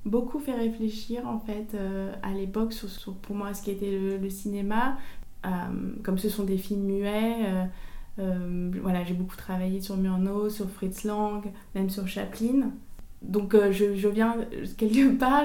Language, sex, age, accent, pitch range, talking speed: French, female, 20-39, French, 195-220 Hz, 180 wpm